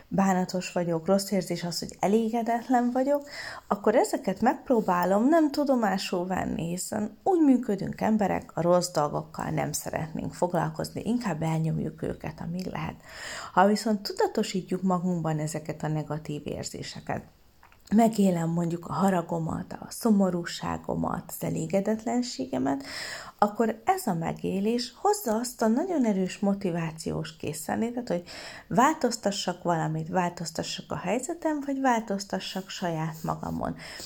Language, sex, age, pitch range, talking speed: Hungarian, female, 30-49, 170-230 Hz, 115 wpm